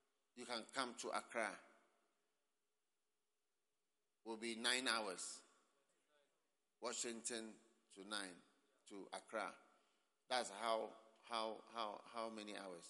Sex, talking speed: male, 100 wpm